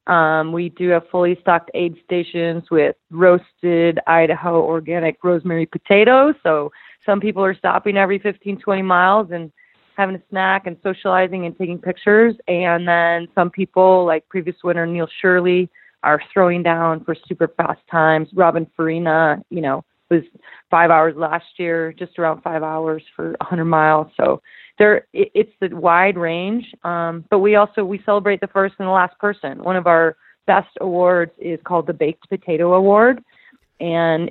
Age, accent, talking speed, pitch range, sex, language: 30-49, American, 165 wpm, 165-190 Hz, female, English